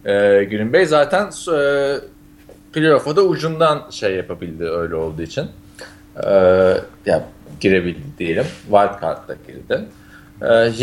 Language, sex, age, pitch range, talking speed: Turkish, male, 30-49, 100-160 Hz, 115 wpm